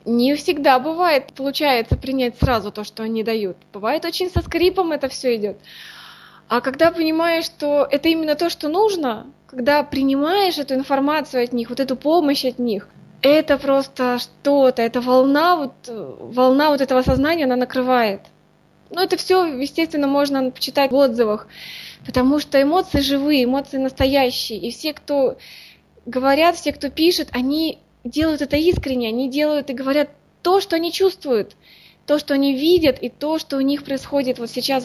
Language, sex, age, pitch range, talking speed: Russian, female, 20-39, 250-295 Hz, 160 wpm